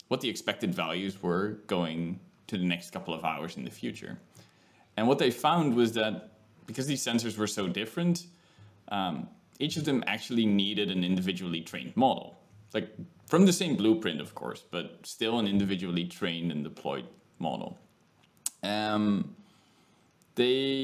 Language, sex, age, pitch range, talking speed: English, male, 20-39, 95-130 Hz, 155 wpm